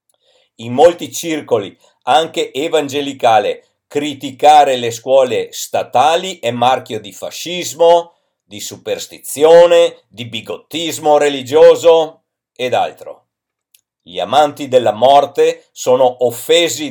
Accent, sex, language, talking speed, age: native, male, Italian, 90 wpm, 50-69